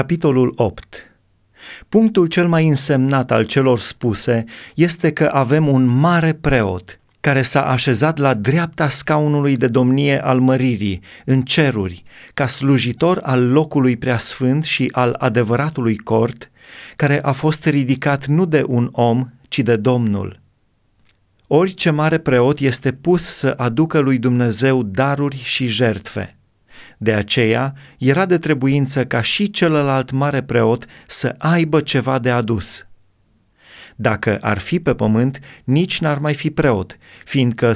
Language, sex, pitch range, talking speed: Romanian, male, 115-150 Hz, 135 wpm